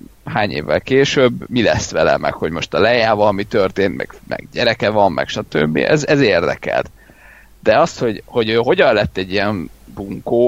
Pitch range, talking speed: 105-135 Hz, 180 wpm